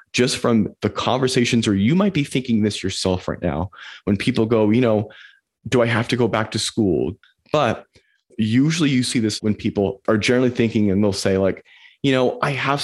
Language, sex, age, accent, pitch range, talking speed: English, male, 30-49, American, 100-125 Hz, 205 wpm